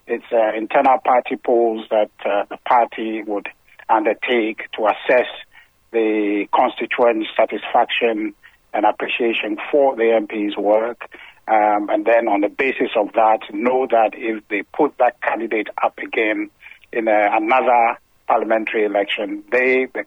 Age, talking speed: 60-79, 135 wpm